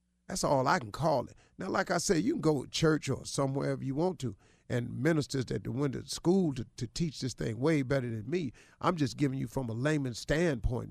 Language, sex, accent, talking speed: English, male, American, 240 wpm